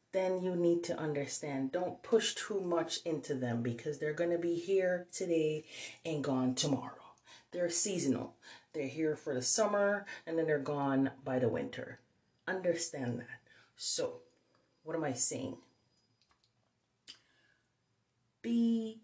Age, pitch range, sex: 30-49, 130-175 Hz, female